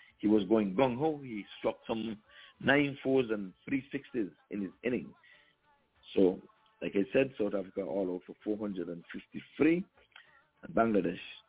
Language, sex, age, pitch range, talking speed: English, male, 60-79, 90-125 Hz, 125 wpm